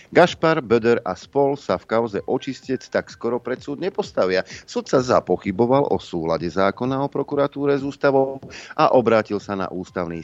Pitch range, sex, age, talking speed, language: 90-120 Hz, male, 40-59, 165 wpm, Slovak